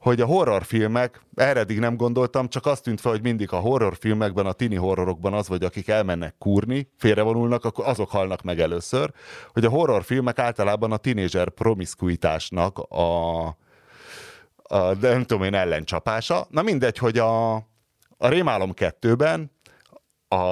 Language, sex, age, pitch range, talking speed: Hungarian, male, 30-49, 95-130 Hz, 150 wpm